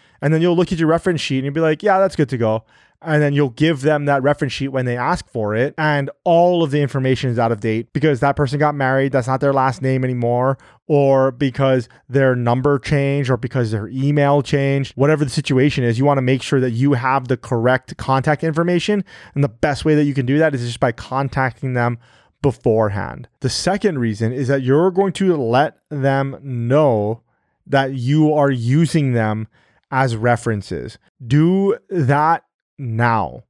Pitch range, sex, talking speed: 125-150 Hz, male, 200 wpm